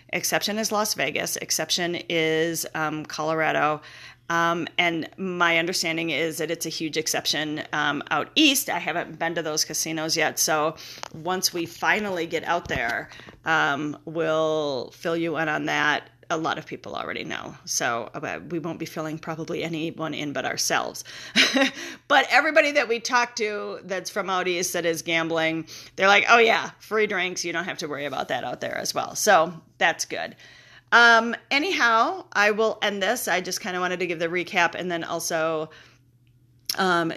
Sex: female